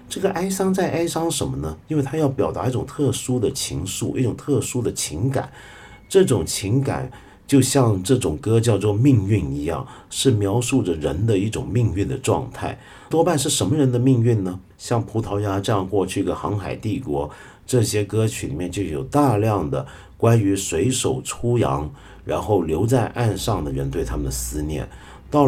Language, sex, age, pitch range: Chinese, male, 50-69, 95-130 Hz